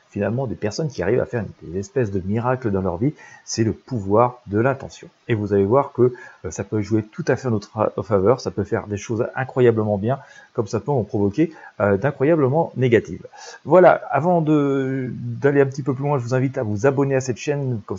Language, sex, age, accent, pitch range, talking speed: French, male, 40-59, French, 105-130 Hz, 220 wpm